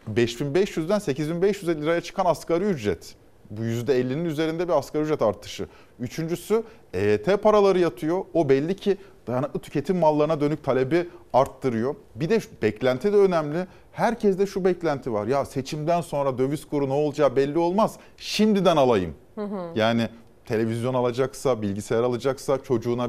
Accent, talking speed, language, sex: native, 140 wpm, Turkish, male